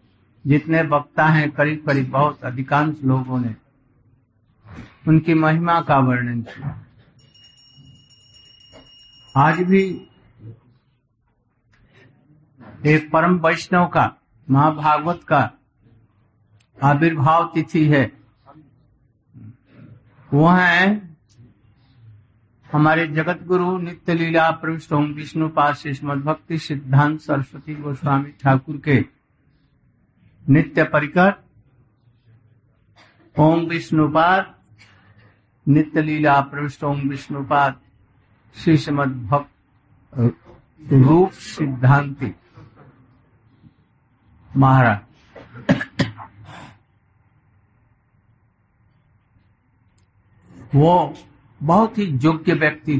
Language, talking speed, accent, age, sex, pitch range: Hindi, 70 wpm, native, 60-79, male, 115-150 Hz